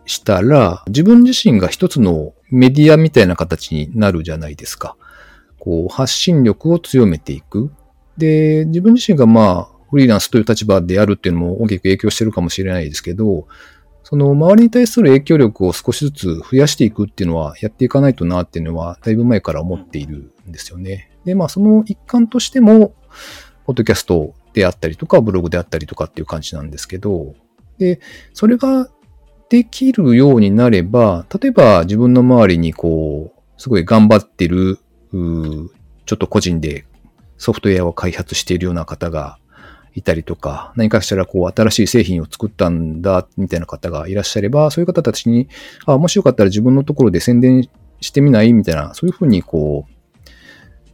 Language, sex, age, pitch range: Japanese, male, 40-59, 85-140 Hz